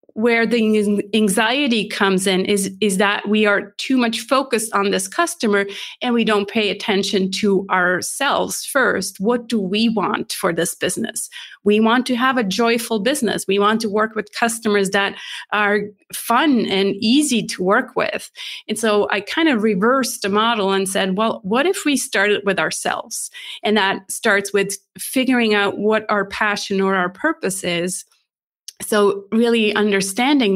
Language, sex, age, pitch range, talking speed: English, female, 30-49, 195-230 Hz, 165 wpm